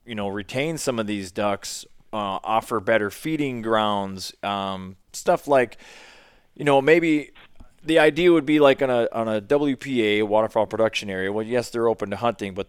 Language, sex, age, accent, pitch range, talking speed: English, male, 20-39, American, 95-115 Hz, 180 wpm